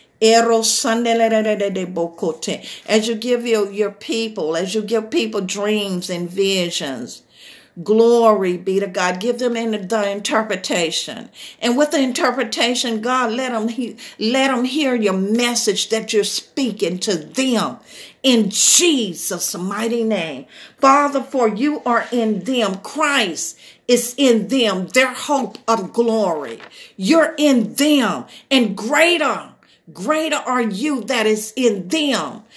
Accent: American